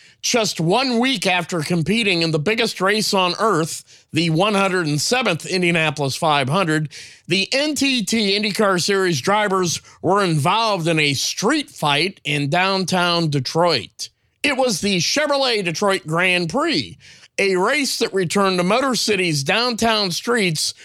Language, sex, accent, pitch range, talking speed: English, male, American, 160-210 Hz, 130 wpm